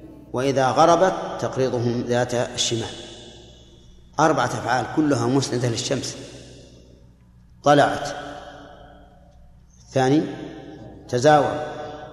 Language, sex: Arabic, male